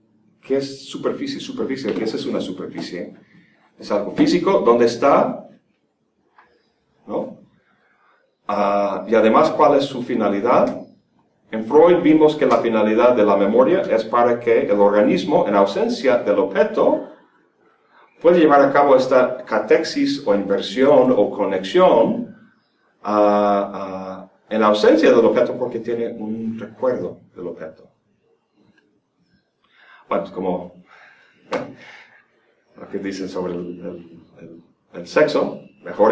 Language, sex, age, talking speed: Spanish, male, 40-59, 125 wpm